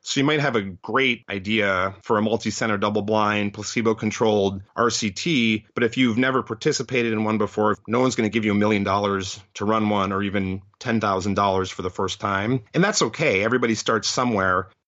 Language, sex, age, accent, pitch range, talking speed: English, male, 30-49, American, 100-120 Hz, 185 wpm